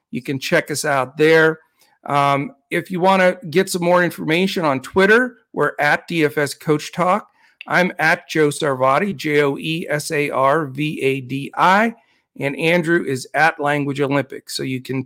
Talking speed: 145 wpm